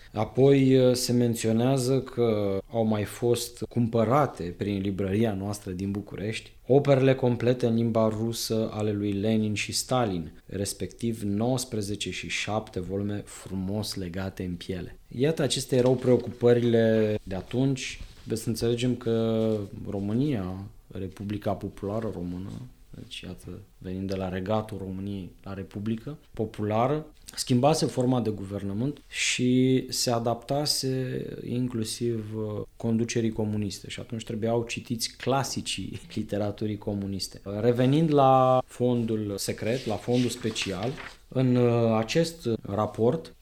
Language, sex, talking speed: English, male, 115 wpm